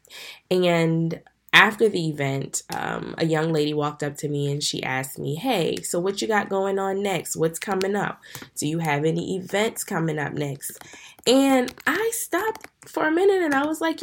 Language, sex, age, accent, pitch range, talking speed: English, female, 10-29, American, 150-190 Hz, 195 wpm